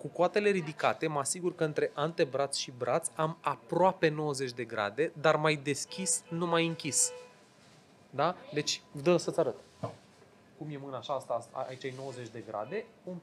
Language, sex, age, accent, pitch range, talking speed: Romanian, male, 20-39, native, 130-165 Hz, 170 wpm